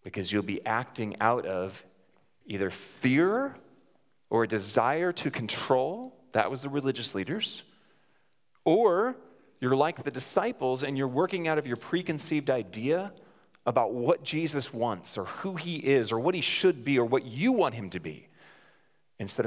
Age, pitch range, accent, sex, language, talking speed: 40-59, 110-170 Hz, American, male, English, 160 wpm